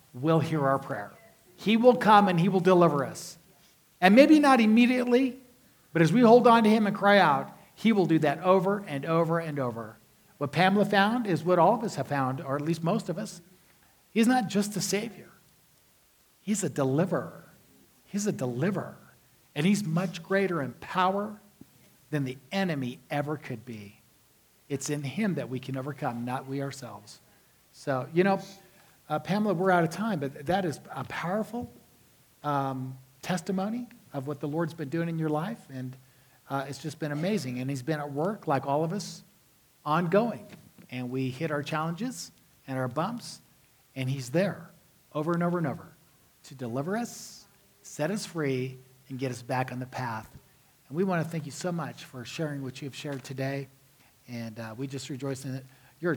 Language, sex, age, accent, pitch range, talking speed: English, male, 50-69, American, 135-190 Hz, 190 wpm